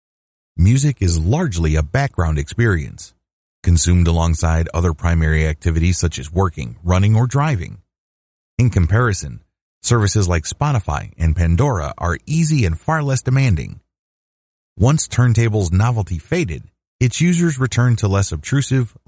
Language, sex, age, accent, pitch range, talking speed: English, male, 30-49, American, 85-115 Hz, 125 wpm